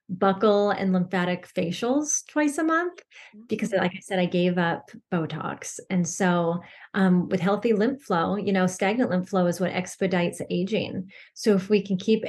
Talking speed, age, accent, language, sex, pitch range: 175 wpm, 30-49, American, English, female, 185-215 Hz